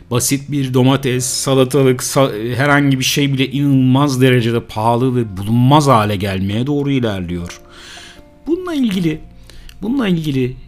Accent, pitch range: native, 105-130 Hz